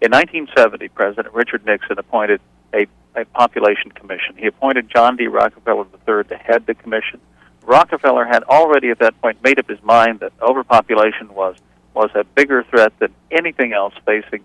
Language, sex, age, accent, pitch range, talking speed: English, male, 50-69, American, 95-120 Hz, 170 wpm